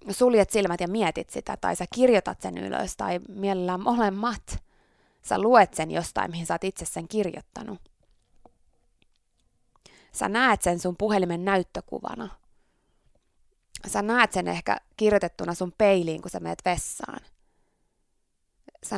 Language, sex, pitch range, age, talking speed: Finnish, female, 175-225 Hz, 20-39, 130 wpm